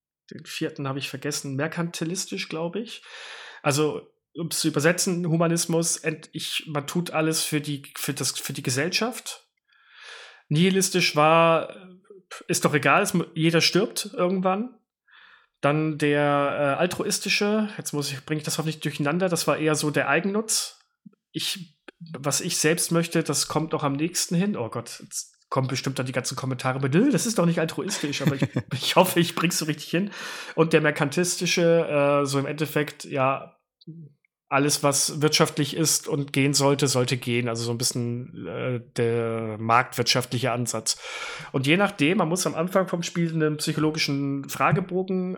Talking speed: 165 wpm